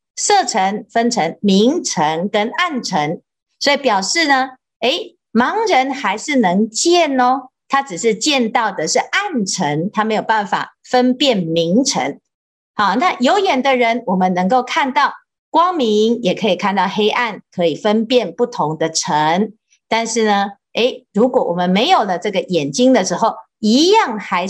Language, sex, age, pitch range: Chinese, female, 50-69, 190-265 Hz